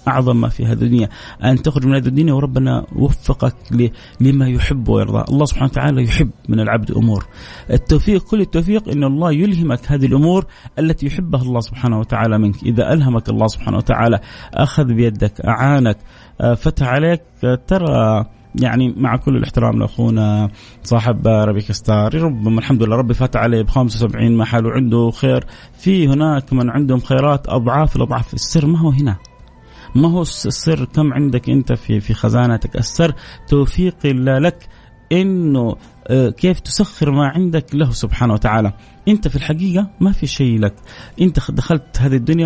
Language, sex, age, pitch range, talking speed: Arabic, male, 30-49, 115-155 Hz, 155 wpm